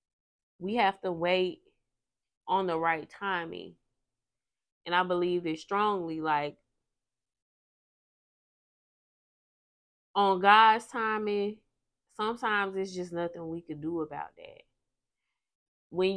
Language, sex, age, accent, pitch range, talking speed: English, female, 20-39, American, 160-200 Hz, 100 wpm